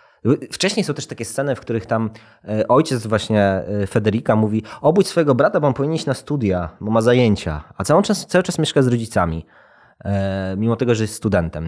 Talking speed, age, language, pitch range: 190 wpm, 20-39, Polish, 100-145 Hz